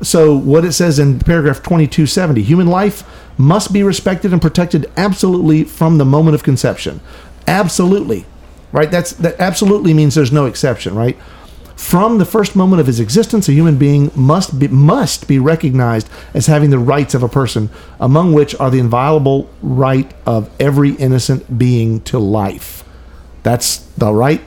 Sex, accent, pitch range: male, American, 115-160 Hz